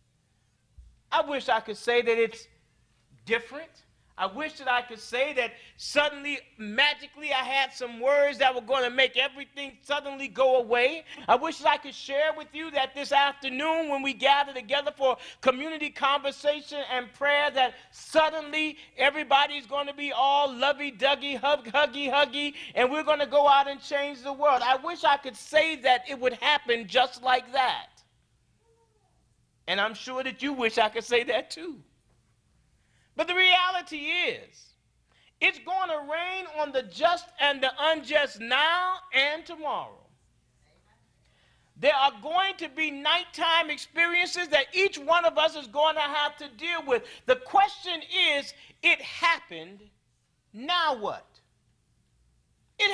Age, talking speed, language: 40-59, 155 wpm, English